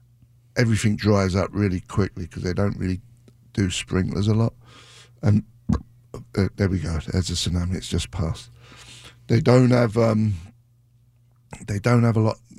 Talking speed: 155 wpm